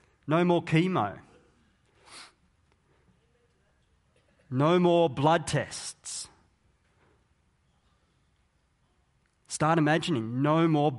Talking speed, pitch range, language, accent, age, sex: 60 wpm, 115-155 Hz, English, Australian, 30-49, male